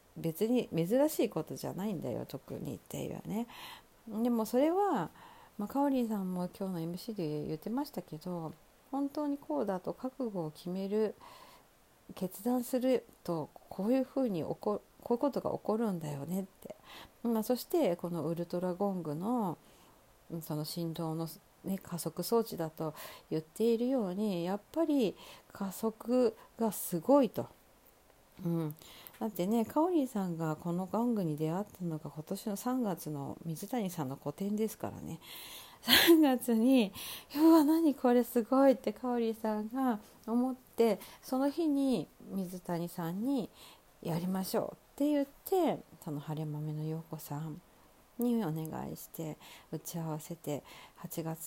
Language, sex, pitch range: Japanese, female, 160-245 Hz